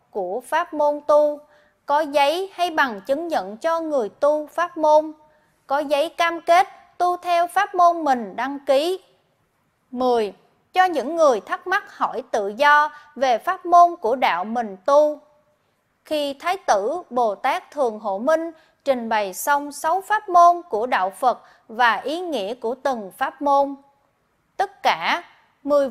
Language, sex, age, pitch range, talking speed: Vietnamese, female, 20-39, 245-350 Hz, 160 wpm